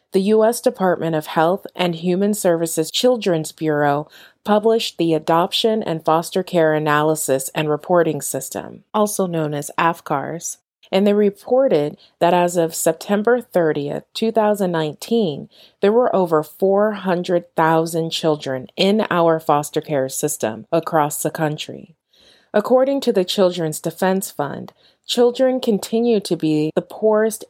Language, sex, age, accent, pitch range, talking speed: English, female, 30-49, American, 155-195 Hz, 125 wpm